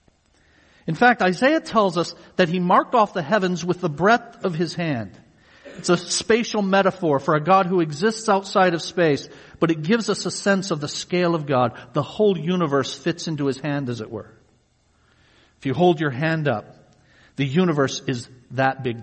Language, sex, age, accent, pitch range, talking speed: English, male, 50-69, American, 145-195 Hz, 190 wpm